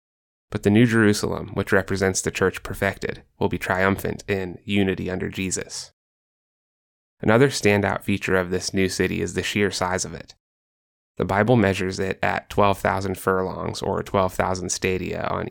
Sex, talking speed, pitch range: male, 155 wpm, 90-100 Hz